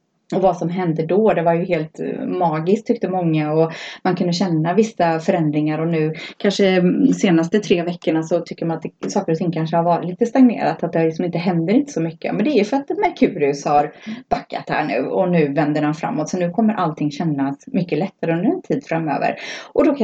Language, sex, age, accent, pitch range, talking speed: Swedish, female, 30-49, native, 165-225 Hz, 230 wpm